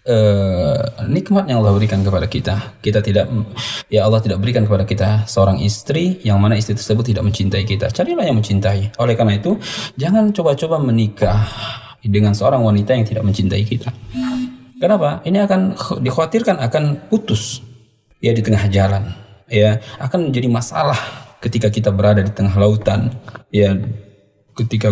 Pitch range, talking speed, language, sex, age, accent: 105-130 Hz, 150 wpm, Indonesian, male, 20-39, native